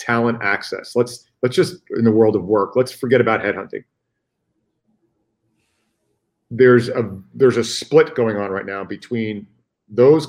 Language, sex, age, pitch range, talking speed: English, male, 40-59, 105-130 Hz, 145 wpm